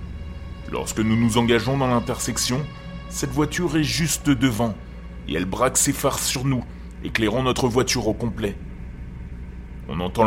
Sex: male